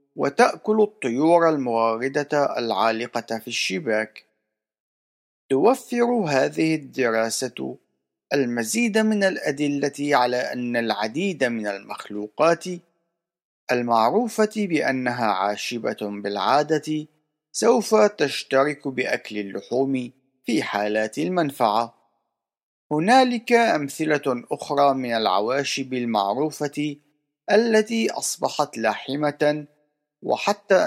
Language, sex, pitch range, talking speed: Arabic, male, 115-165 Hz, 75 wpm